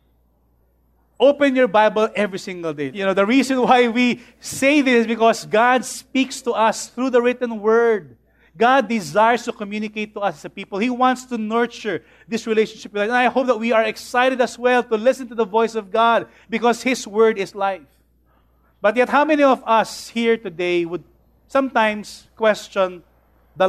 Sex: male